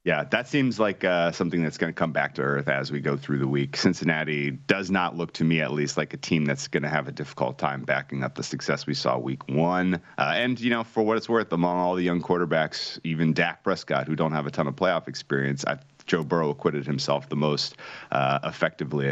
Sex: male